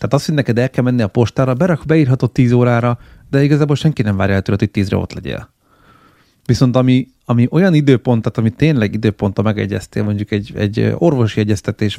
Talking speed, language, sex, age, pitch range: 185 wpm, Hungarian, male, 30-49, 105-130 Hz